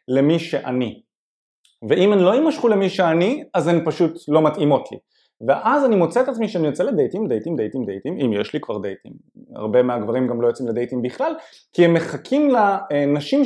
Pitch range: 130-185 Hz